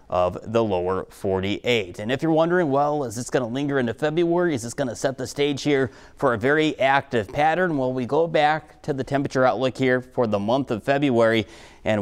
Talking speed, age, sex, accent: 220 wpm, 30-49, male, American